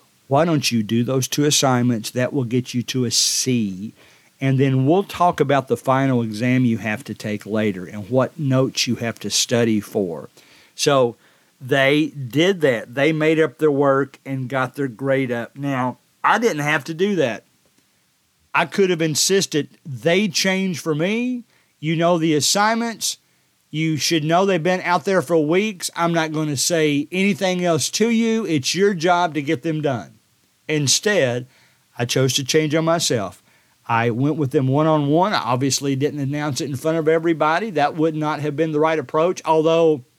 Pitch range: 130-170 Hz